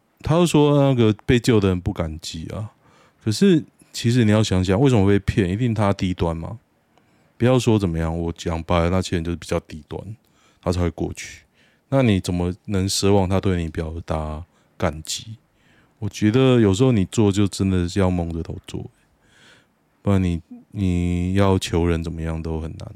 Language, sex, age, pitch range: Chinese, male, 20-39, 90-120 Hz